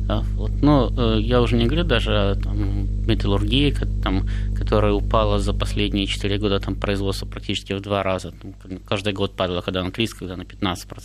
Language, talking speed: Russian, 170 wpm